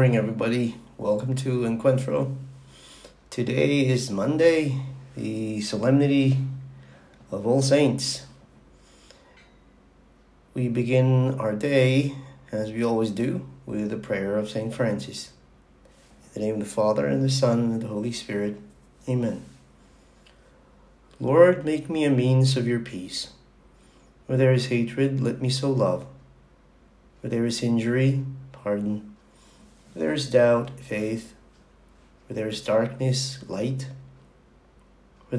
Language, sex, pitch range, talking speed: English, male, 105-130 Hz, 125 wpm